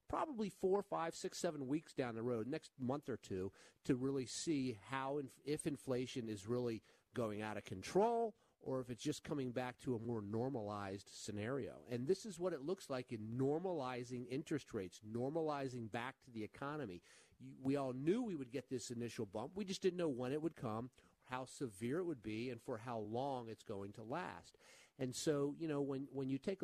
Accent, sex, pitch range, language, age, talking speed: American, male, 120-160 Hz, English, 50-69, 205 wpm